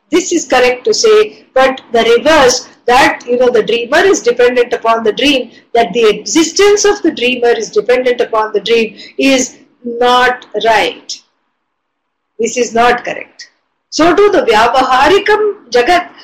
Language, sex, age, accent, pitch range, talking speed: English, female, 50-69, Indian, 240-335 Hz, 150 wpm